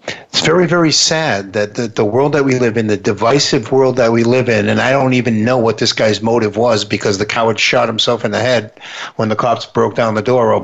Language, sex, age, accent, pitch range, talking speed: English, male, 50-69, American, 110-135 Hz, 255 wpm